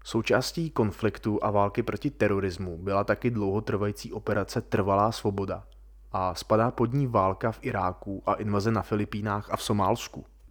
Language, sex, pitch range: Czech, male, 100-115 Hz